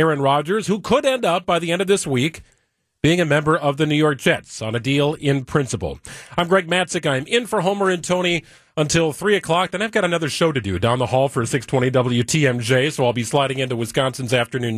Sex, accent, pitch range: male, American, 125-170 Hz